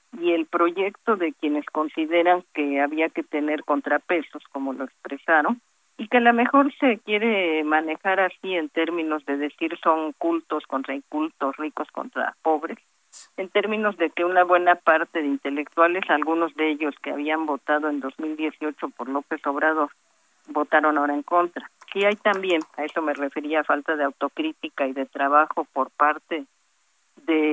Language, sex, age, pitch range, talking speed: Spanish, female, 40-59, 150-175 Hz, 160 wpm